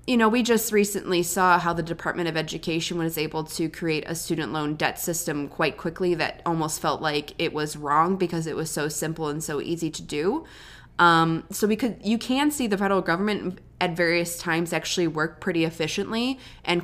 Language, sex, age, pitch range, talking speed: English, female, 20-39, 160-200 Hz, 205 wpm